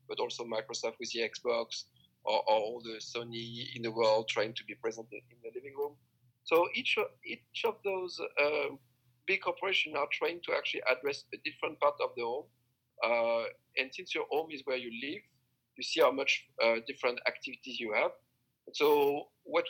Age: 50-69